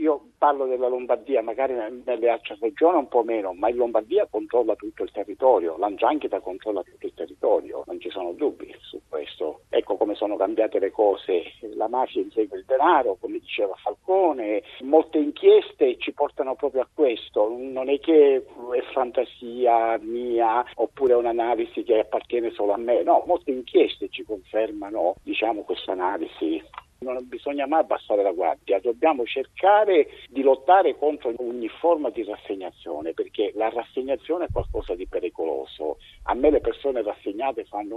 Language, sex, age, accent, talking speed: Italian, male, 50-69, native, 160 wpm